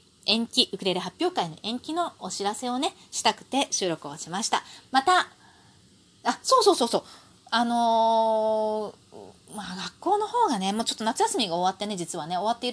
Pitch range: 180-275 Hz